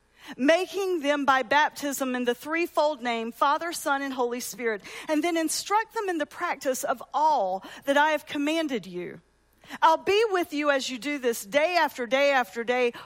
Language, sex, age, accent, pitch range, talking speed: English, female, 40-59, American, 265-355 Hz, 185 wpm